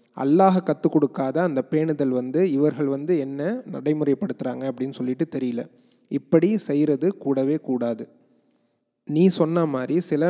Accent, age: native, 30-49